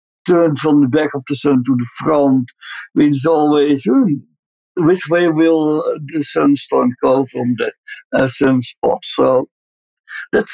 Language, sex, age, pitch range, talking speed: English, male, 60-79, 130-170 Hz, 150 wpm